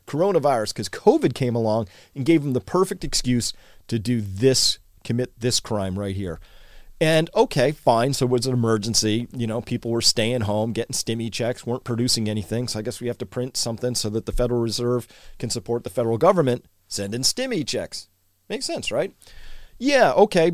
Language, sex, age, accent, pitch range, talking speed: English, male, 40-59, American, 110-160 Hz, 190 wpm